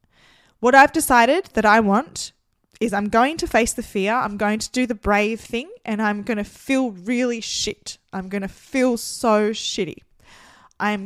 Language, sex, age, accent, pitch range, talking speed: English, female, 20-39, Australian, 205-255 Hz, 185 wpm